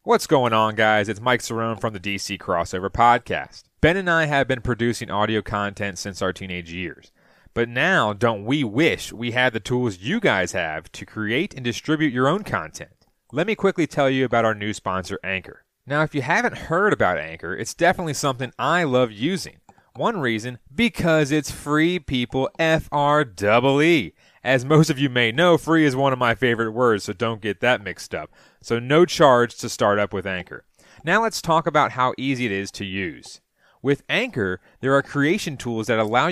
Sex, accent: male, American